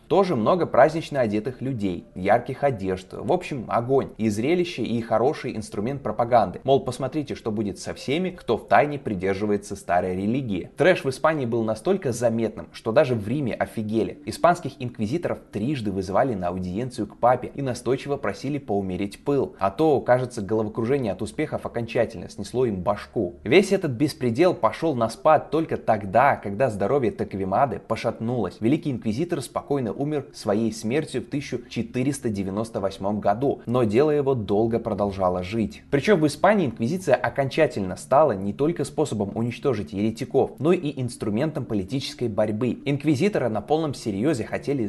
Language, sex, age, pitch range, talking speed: Russian, male, 20-39, 105-140 Hz, 145 wpm